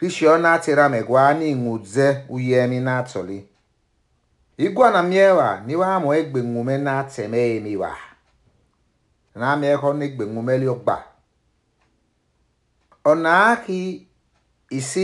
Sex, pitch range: male, 105-160 Hz